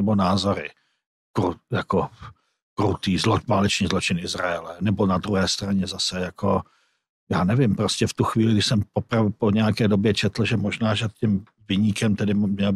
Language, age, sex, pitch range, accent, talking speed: Czech, 60-79, male, 100-115 Hz, native, 160 wpm